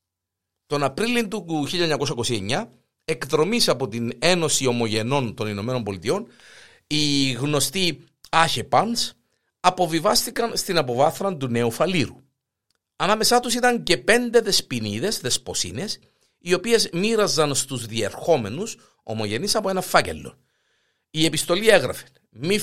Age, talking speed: 50-69, 110 wpm